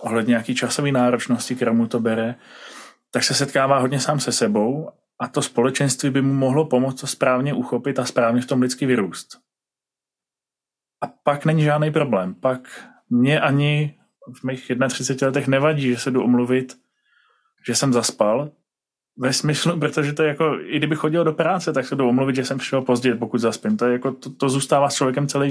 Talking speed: 190 wpm